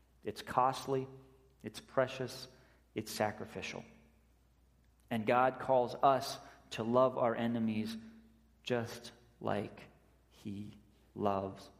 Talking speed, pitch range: 90 wpm, 105-135 Hz